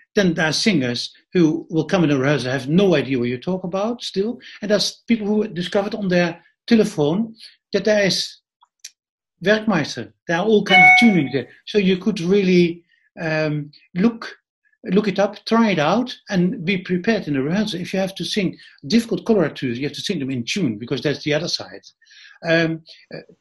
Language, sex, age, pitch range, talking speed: Italian, male, 60-79, 135-200 Hz, 200 wpm